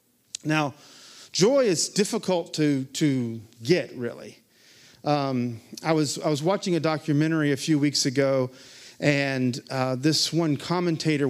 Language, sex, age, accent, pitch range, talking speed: English, male, 40-59, American, 130-165 Hz, 135 wpm